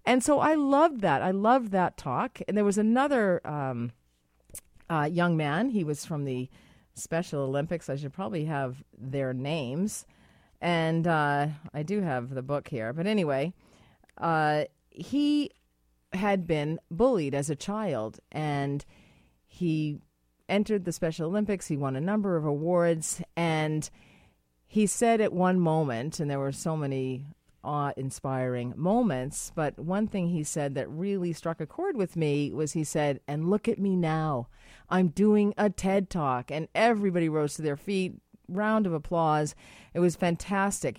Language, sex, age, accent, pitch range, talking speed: English, female, 40-59, American, 145-200 Hz, 160 wpm